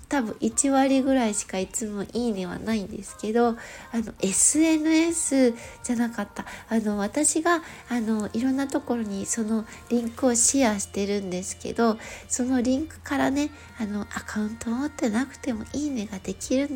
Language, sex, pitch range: Japanese, female, 225-335 Hz